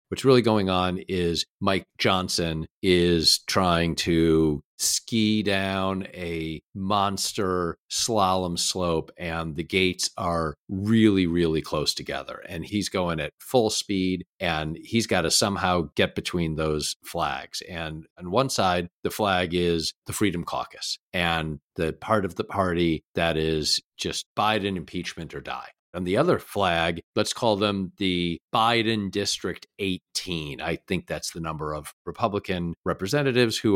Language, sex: English, male